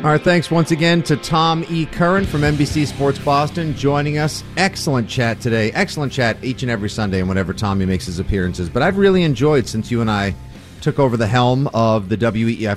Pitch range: 105-145 Hz